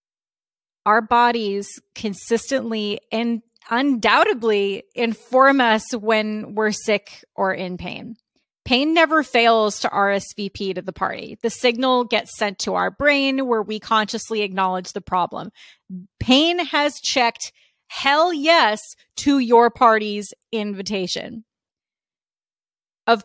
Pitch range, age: 215-265 Hz, 30-49